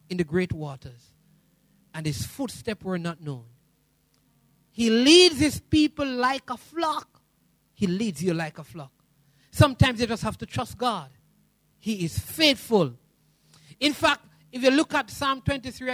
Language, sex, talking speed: English, male, 155 wpm